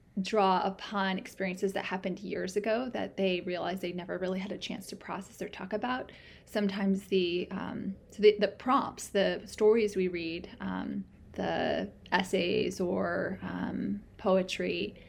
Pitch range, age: 185-210 Hz, 20-39